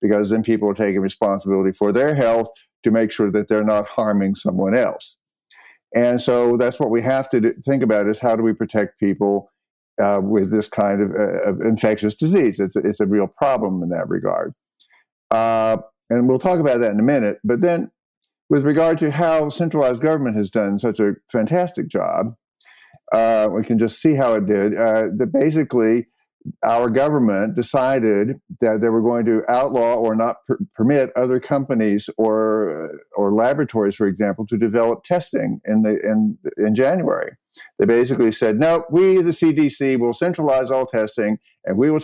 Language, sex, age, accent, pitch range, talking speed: English, male, 50-69, American, 105-135 Hz, 180 wpm